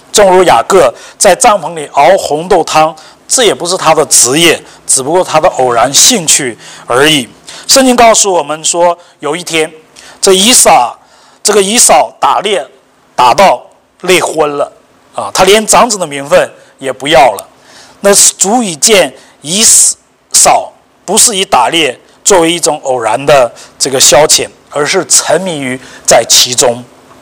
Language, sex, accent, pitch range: English, male, Chinese, 155-205 Hz